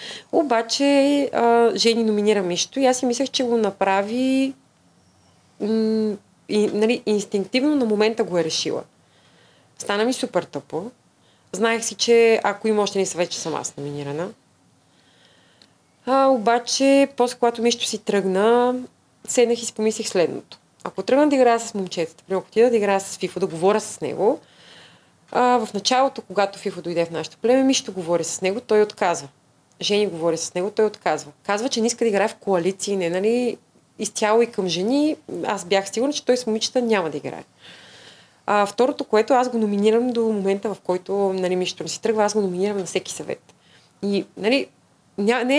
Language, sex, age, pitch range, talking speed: Bulgarian, female, 30-49, 195-240 Hz, 175 wpm